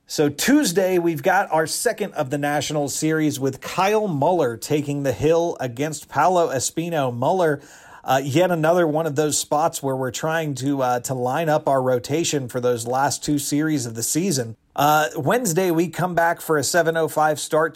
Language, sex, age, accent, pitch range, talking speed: English, male, 40-59, American, 130-165 Hz, 185 wpm